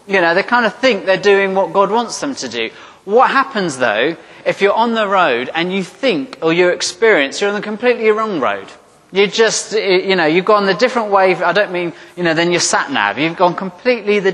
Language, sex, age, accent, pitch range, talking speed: English, male, 30-49, British, 160-205 Hz, 230 wpm